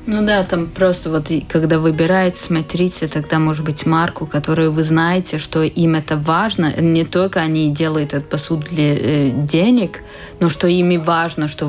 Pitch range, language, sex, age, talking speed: 160-185 Hz, Russian, female, 20-39, 165 wpm